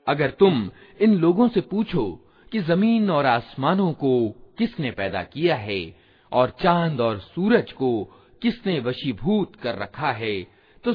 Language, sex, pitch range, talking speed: Hindi, male, 115-185 Hz, 140 wpm